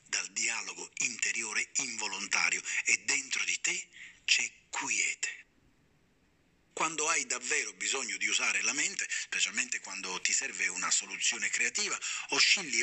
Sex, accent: male, native